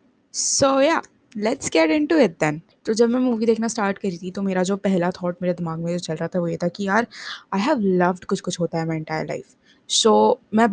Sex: female